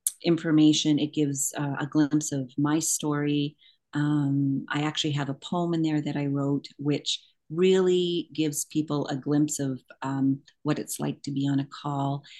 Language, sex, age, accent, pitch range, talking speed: English, female, 40-59, American, 140-160 Hz, 175 wpm